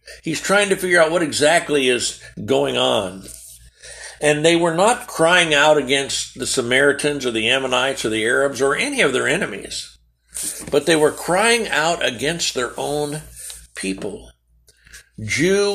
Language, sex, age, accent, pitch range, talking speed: English, male, 60-79, American, 115-165 Hz, 150 wpm